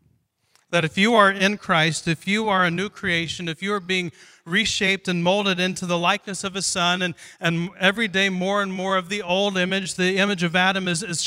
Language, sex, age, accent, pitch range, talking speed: English, male, 40-59, American, 150-195 Hz, 225 wpm